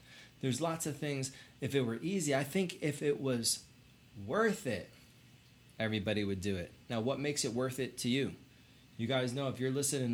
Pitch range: 115-140 Hz